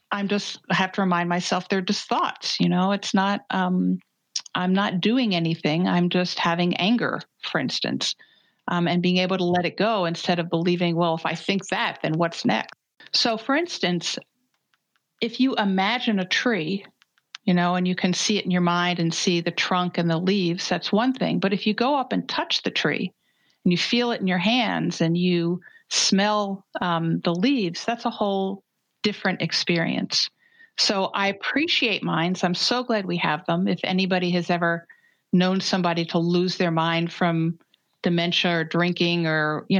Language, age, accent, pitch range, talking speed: English, 50-69, American, 175-215 Hz, 190 wpm